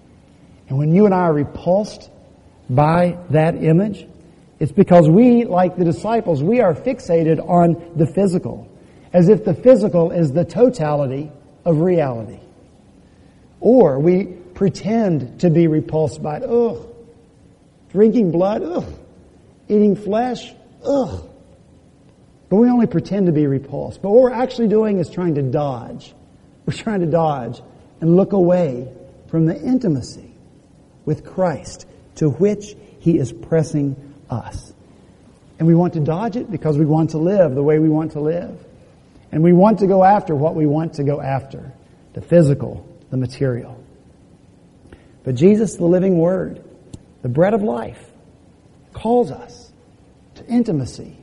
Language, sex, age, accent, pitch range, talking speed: English, male, 50-69, American, 145-200 Hz, 150 wpm